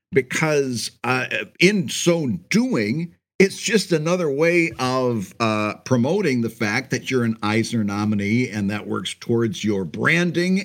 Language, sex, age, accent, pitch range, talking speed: English, male, 50-69, American, 115-165 Hz, 140 wpm